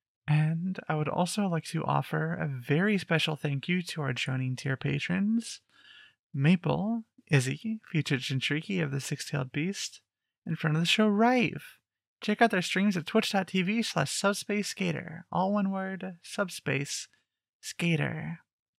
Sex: male